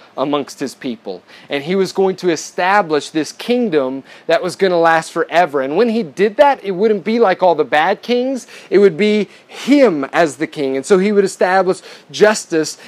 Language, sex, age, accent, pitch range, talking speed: English, male, 30-49, American, 145-190 Hz, 200 wpm